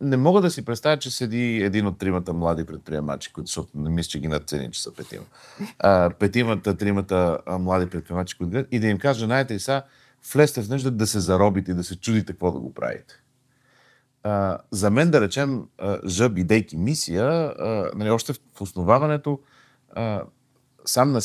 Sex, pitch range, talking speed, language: male, 100-145 Hz, 170 wpm, Bulgarian